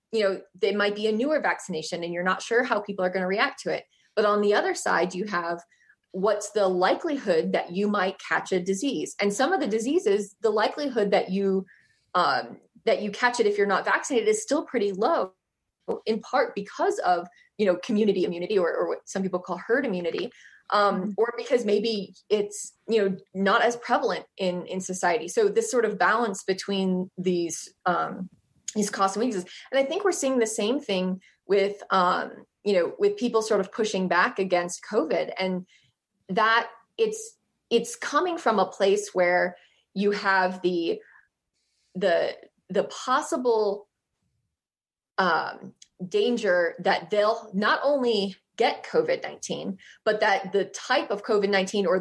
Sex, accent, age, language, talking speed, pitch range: female, American, 20-39, English, 170 wpm, 190-235 Hz